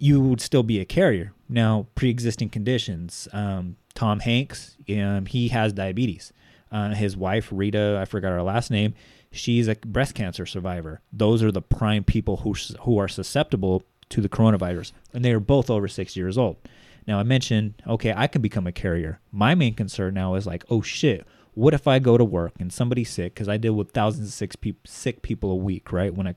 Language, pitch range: English, 95-120 Hz